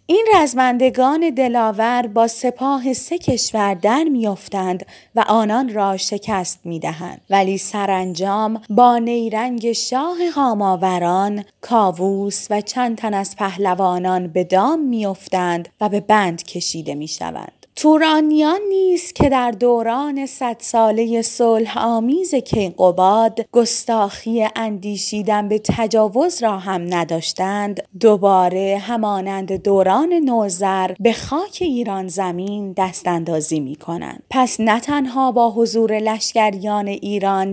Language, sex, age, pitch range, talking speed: Persian, female, 20-39, 190-245 Hz, 115 wpm